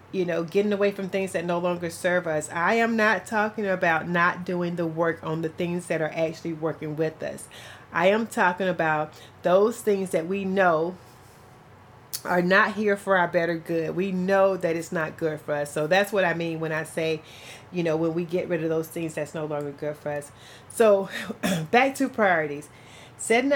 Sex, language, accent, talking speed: female, English, American, 205 wpm